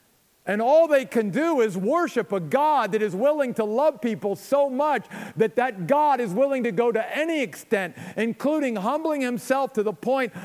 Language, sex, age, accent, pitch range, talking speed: English, male, 50-69, American, 175-235 Hz, 190 wpm